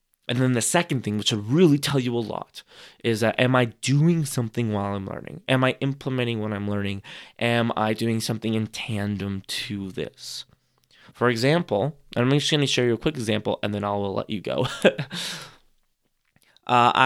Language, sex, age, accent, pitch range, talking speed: English, male, 20-39, American, 105-135 Hz, 190 wpm